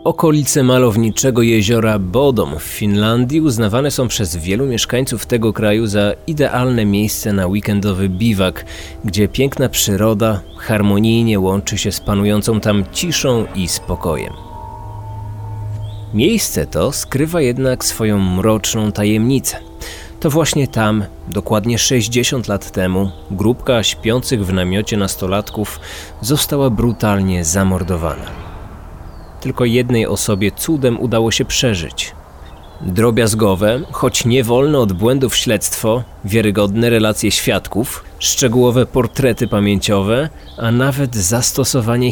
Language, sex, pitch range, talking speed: Polish, male, 95-125 Hz, 105 wpm